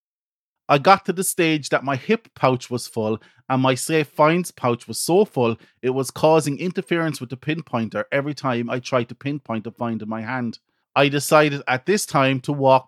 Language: English